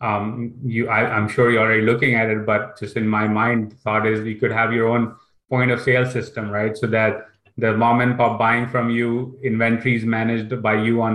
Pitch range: 110-125 Hz